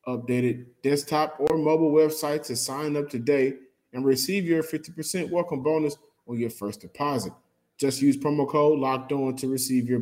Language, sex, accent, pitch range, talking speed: English, male, American, 130-155 Hz, 160 wpm